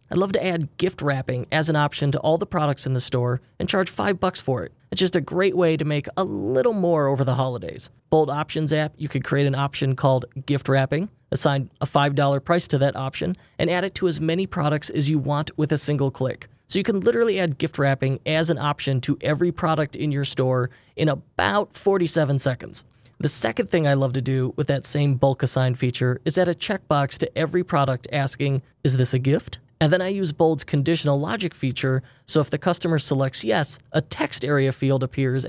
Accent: American